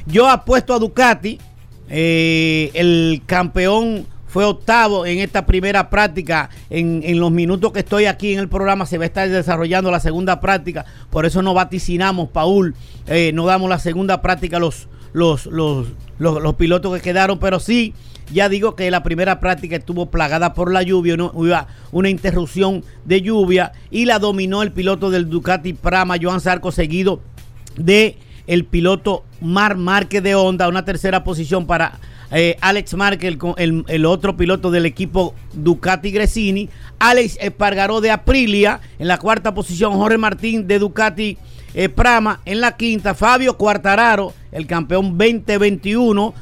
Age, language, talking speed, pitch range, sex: 50-69, Spanish, 165 wpm, 170-210 Hz, male